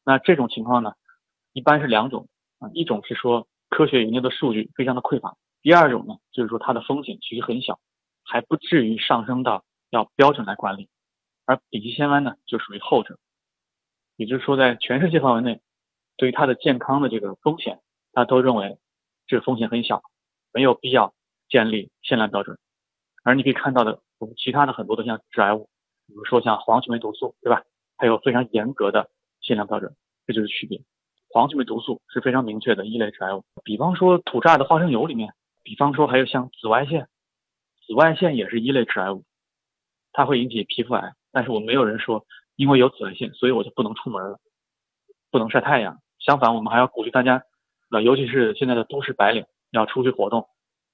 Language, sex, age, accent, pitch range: Chinese, male, 20-39, native, 115-135 Hz